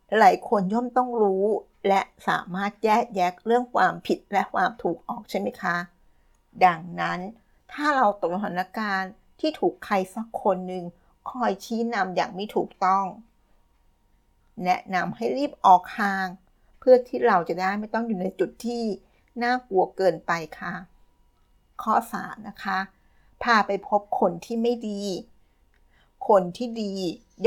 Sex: female